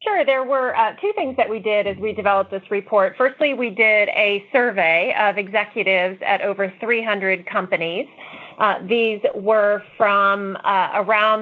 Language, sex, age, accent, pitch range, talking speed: English, female, 30-49, American, 190-220 Hz, 165 wpm